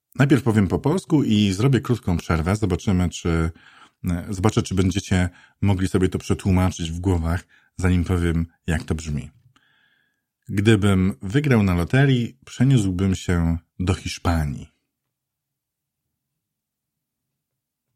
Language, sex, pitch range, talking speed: Polish, male, 85-100 Hz, 100 wpm